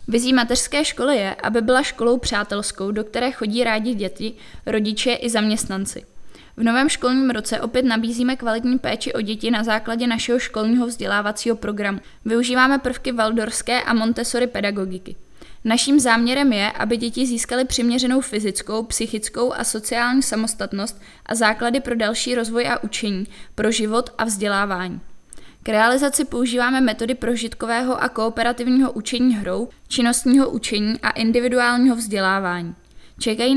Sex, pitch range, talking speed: female, 220-250 Hz, 135 wpm